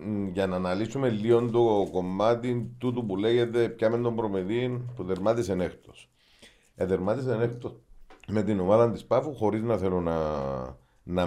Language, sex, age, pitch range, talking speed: Greek, male, 40-59, 85-110 Hz, 145 wpm